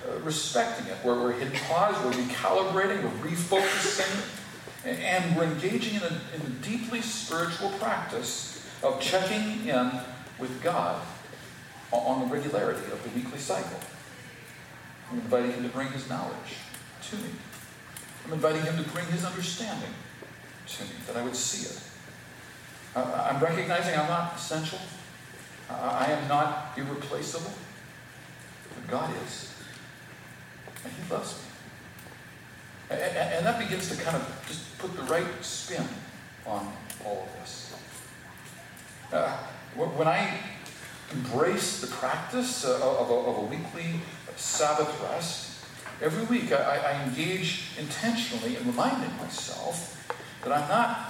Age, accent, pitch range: 50-69, American, 130-190 Hz